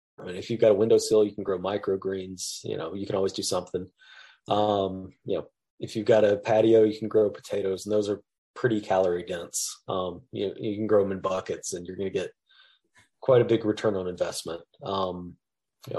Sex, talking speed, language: male, 220 wpm, English